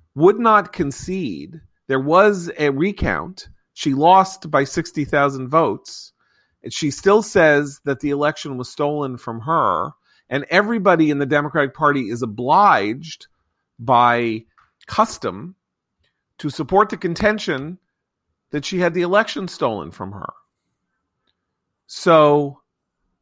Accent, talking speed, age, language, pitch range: American, 115 wpm, 40-59, English, 110-155 Hz